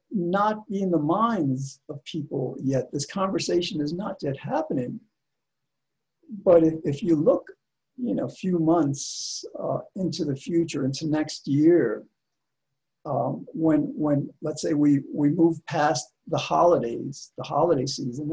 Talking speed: 145 wpm